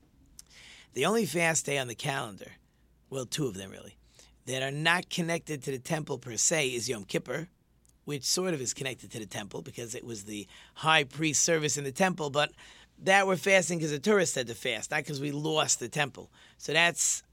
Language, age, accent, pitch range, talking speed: English, 40-59, American, 130-175 Hz, 210 wpm